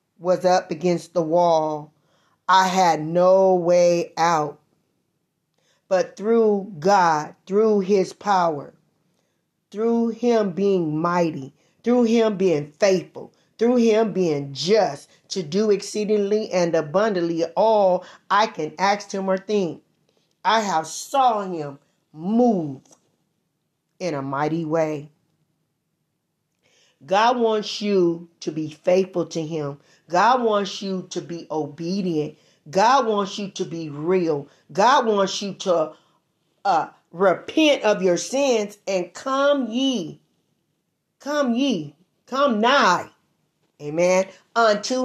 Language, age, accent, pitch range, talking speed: English, 40-59, American, 160-210 Hz, 115 wpm